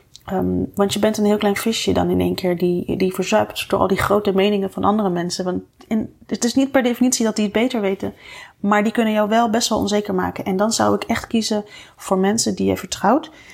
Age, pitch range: 30-49, 185-220 Hz